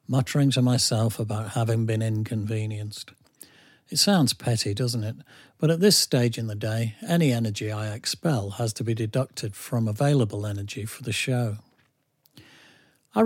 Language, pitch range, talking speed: English, 110-135 Hz, 155 wpm